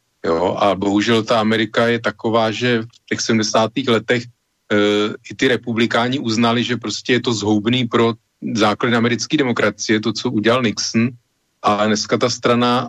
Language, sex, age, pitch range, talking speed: Slovak, male, 40-59, 110-120 Hz, 160 wpm